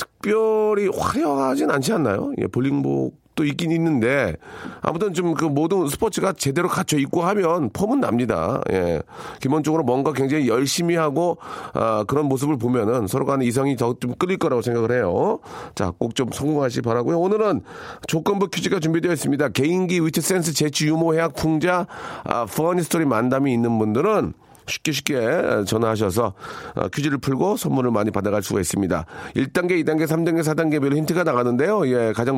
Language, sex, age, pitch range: Korean, male, 40-59, 120-165 Hz